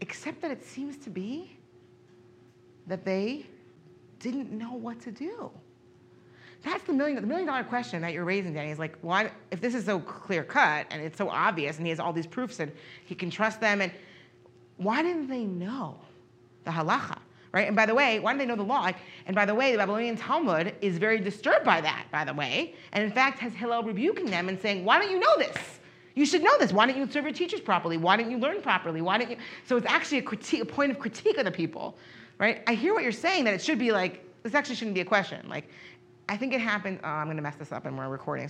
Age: 40-59